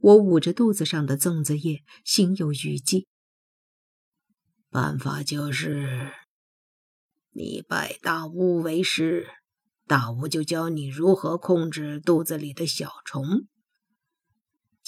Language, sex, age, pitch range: Chinese, female, 50-69, 155-195 Hz